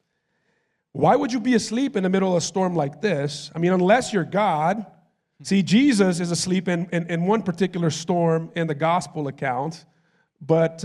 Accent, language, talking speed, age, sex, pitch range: American, English, 185 wpm, 40-59, male, 155-190 Hz